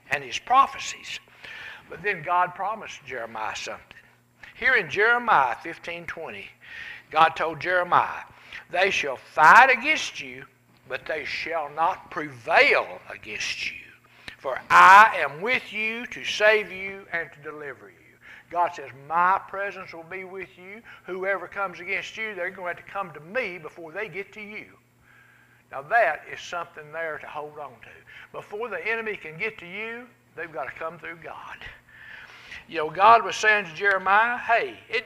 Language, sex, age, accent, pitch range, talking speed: English, male, 60-79, American, 170-230 Hz, 165 wpm